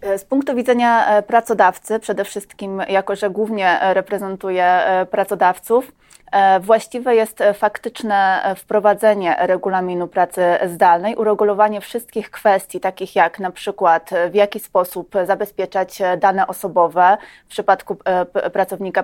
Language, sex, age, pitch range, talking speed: Polish, female, 20-39, 180-210 Hz, 105 wpm